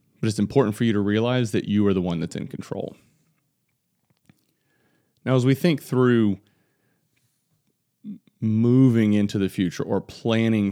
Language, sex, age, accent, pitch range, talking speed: English, male, 30-49, American, 100-125 Hz, 140 wpm